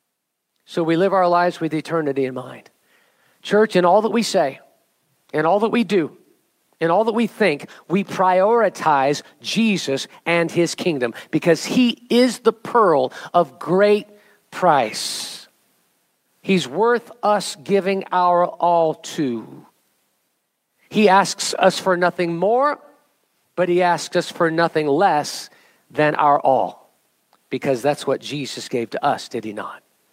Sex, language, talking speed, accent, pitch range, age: male, English, 145 wpm, American, 150-195 Hz, 50-69